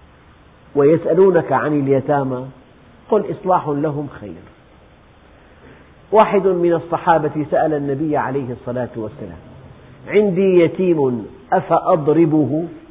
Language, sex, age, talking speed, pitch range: Indonesian, male, 50-69, 85 wpm, 125-175 Hz